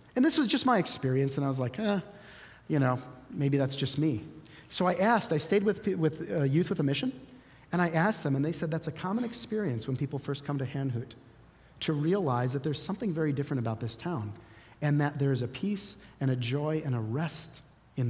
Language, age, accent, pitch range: English, 40-59, American, 125-175 Hz